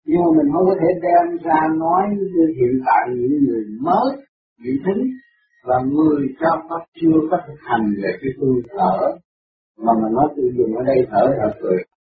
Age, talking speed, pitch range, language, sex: 50-69, 190 wpm, 140-190 Hz, Vietnamese, male